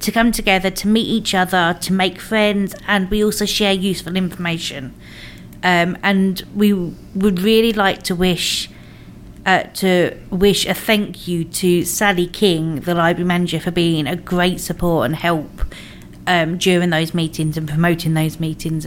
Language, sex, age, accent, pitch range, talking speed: English, female, 40-59, British, 165-205 Hz, 165 wpm